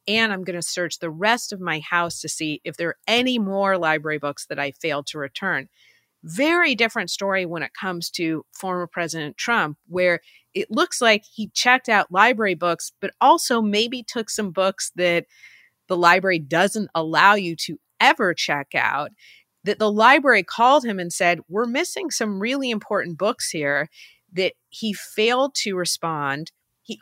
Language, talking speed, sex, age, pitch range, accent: English, 175 wpm, female, 30-49, 170-235 Hz, American